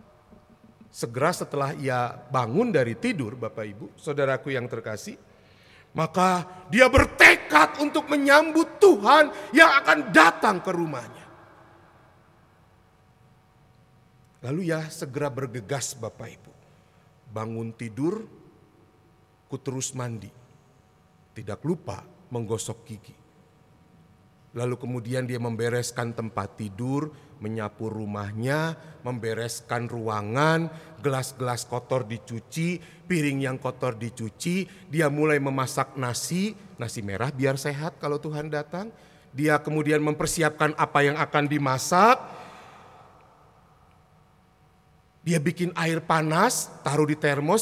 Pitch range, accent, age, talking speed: 125-175 Hz, native, 50-69, 100 wpm